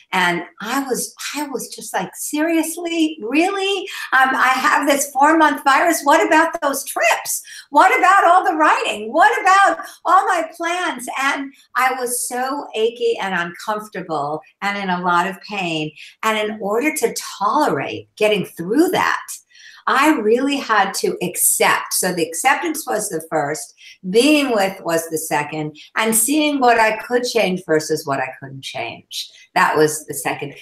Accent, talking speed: American, 160 wpm